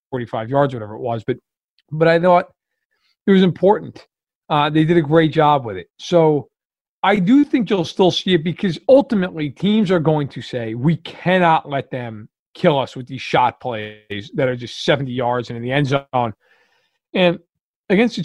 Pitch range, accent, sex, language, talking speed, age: 140-190 Hz, American, male, English, 190 wpm, 40-59